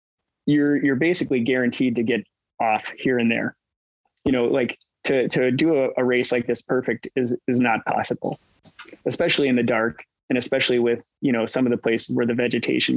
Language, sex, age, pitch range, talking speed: English, male, 20-39, 115-130 Hz, 195 wpm